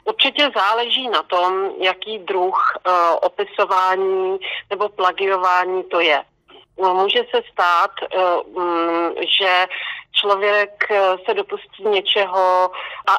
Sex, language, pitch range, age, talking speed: female, Slovak, 185-220 Hz, 40-59, 105 wpm